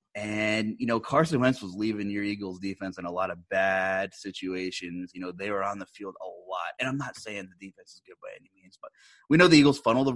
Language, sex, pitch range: English, male, 100-135 Hz